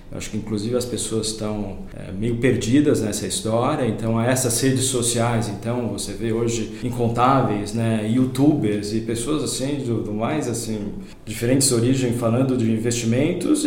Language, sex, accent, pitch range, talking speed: Portuguese, male, Brazilian, 110-140 Hz, 150 wpm